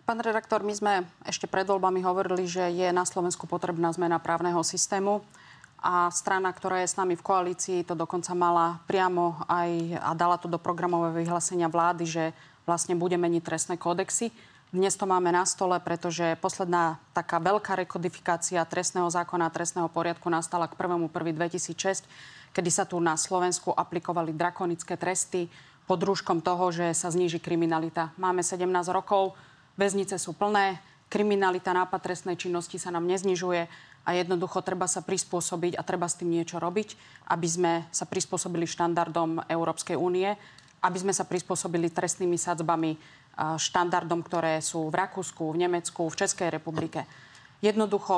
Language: Slovak